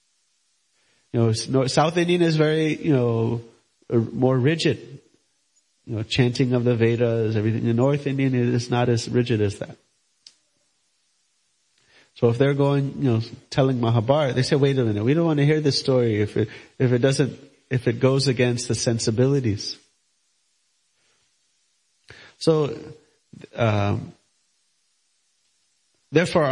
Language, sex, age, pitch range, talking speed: English, male, 30-49, 115-140 Hz, 140 wpm